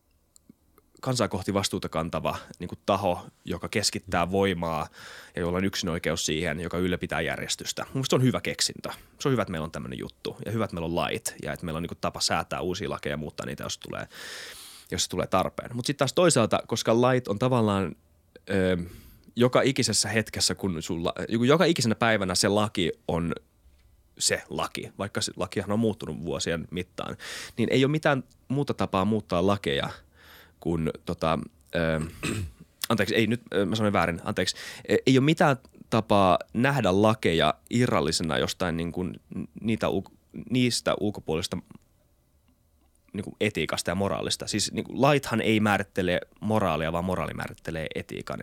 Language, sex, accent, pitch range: Finnish, male, native, 85-110 Hz